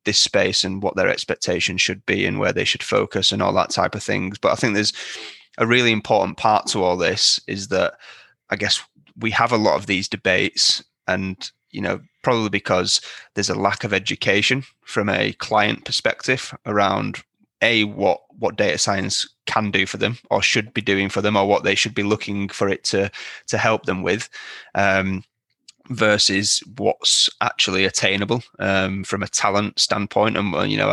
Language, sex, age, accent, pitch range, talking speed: English, male, 20-39, British, 95-110 Hz, 190 wpm